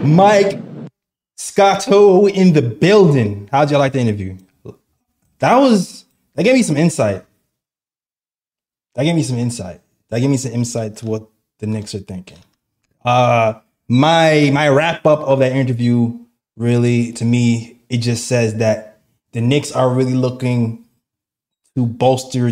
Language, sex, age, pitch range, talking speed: English, male, 20-39, 110-140 Hz, 145 wpm